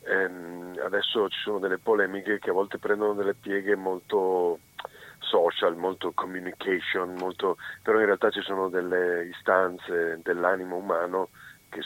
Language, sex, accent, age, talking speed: Italian, male, native, 40-59, 135 wpm